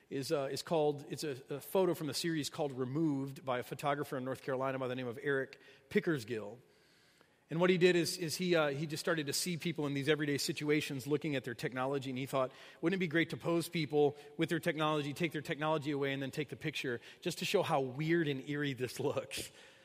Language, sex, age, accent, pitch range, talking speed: English, male, 40-59, American, 135-165 Hz, 235 wpm